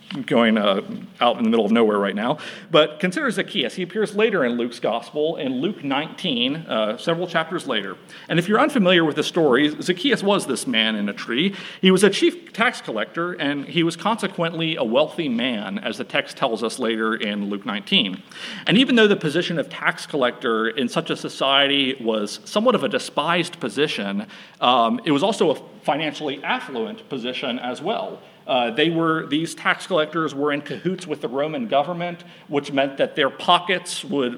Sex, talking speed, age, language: male, 190 wpm, 40-59, English